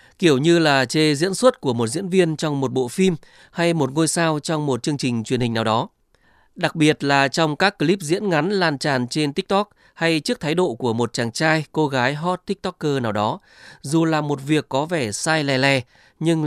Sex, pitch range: male, 125-165 Hz